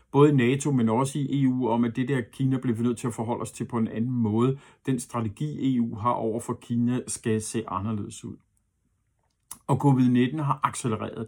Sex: male